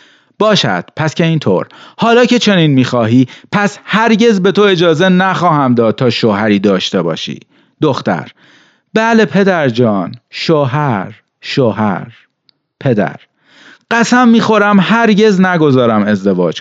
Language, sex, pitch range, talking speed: Persian, male, 125-195 Hz, 110 wpm